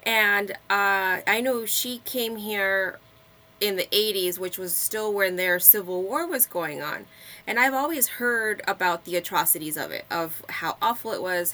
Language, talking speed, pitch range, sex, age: English, 175 wpm, 180-225 Hz, female, 20-39